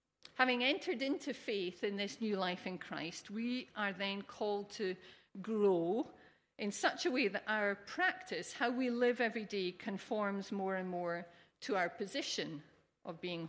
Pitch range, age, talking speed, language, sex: 185-245 Hz, 50-69, 165 wpm, English, female